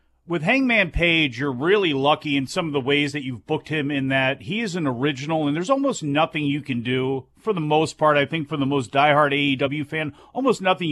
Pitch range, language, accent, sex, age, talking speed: 135-185 Hz, English, American, male, 40-59, 230 wpm